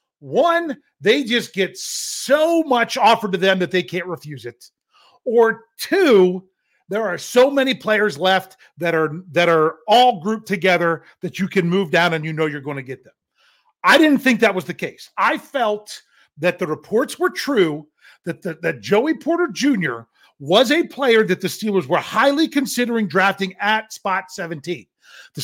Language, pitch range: English, 175-240 Hz